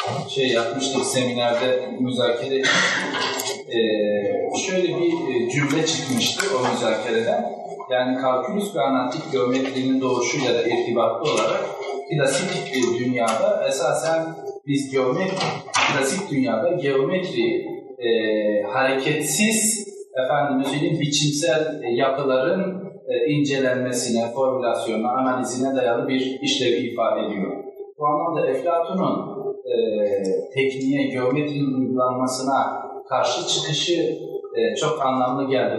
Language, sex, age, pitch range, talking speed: Turkish, male, 40-59, 130-185 Hz, 95 wpm